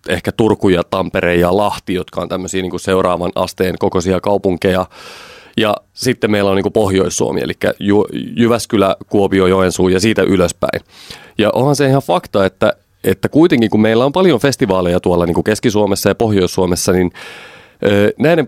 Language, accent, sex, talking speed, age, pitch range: Finnish, native, male, 155 wpm, 30-49, 95-120 Hz